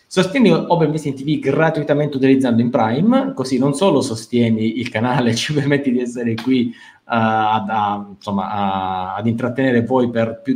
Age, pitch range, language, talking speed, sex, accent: 20-39, 110-145 Hz, Italian, 160 wpm, male, native